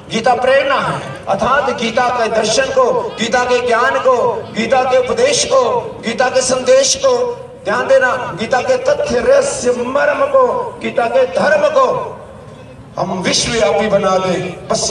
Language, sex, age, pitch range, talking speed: Hindi, male, 50-69, 240-295 Hz, 115 wpm